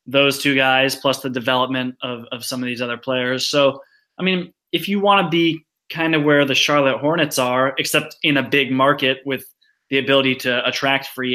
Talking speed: 205 wpm